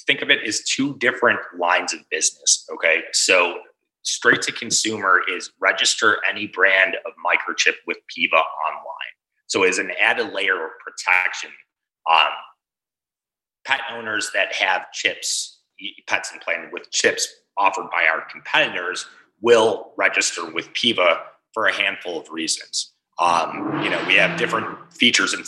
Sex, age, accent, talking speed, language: male, 30-49, American, 145 wpm, English